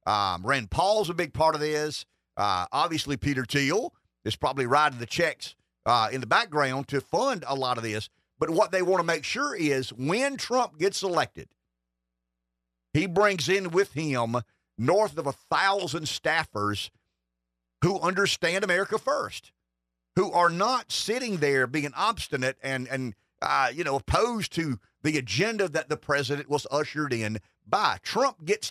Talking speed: 165 wpm